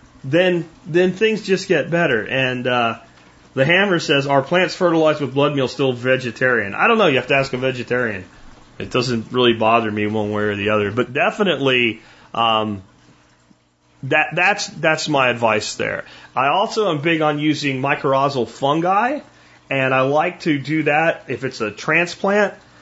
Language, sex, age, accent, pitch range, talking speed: English, male, 30-49, American, 120-155 Hz, 170 wpm